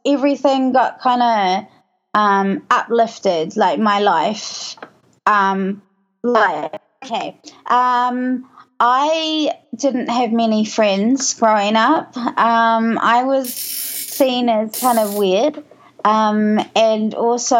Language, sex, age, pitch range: English, female, 20-39, 210-250 Hz